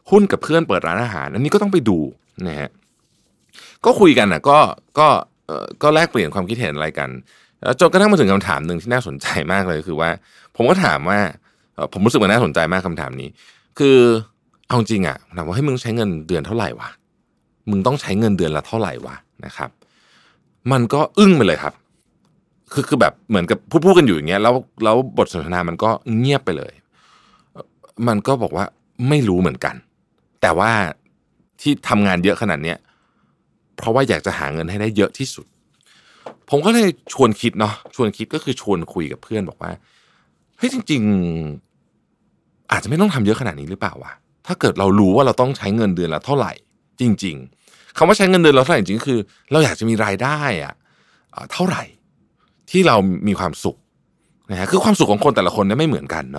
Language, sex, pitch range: Thai, male, 90-135 Hz